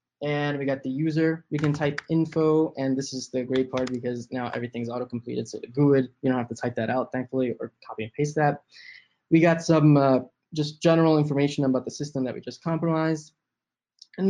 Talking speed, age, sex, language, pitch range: 205 wpm, 10-29, male, English, 130-160 Hz